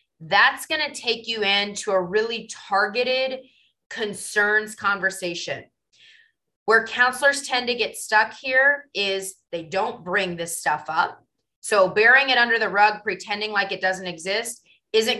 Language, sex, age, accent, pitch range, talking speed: English, female, 20-39, American, 175-225 Hz, 145 wpm